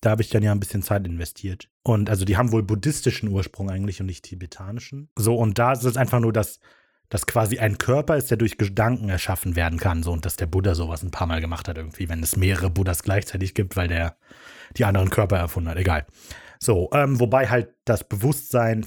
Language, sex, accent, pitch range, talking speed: German, male, German, 95-125 Hz, 225 wpm